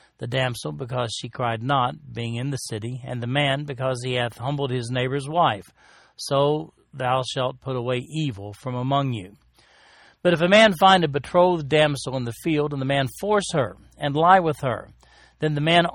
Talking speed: 195 wpm